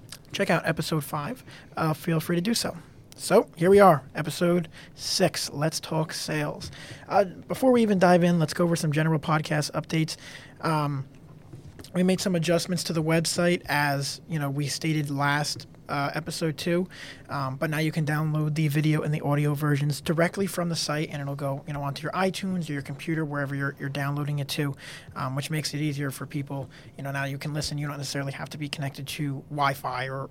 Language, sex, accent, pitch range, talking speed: English, male, American, 140-165 Hz, 205 wpm